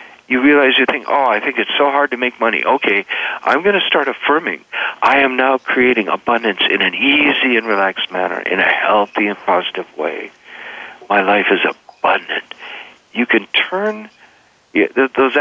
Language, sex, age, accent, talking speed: English, male, 60-79, American, 170 wpm